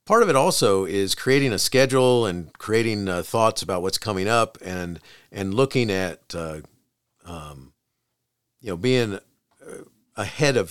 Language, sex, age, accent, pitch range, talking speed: English, male, 50-69, American, 80-105 Hz, 150 wpm